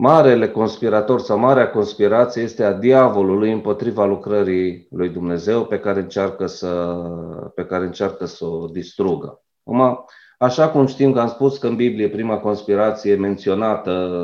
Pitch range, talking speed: 95-125 Hz, 130 wpm